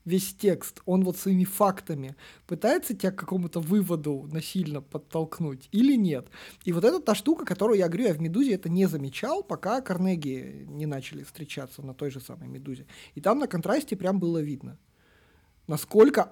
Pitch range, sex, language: 150-200 Hz, male, Russian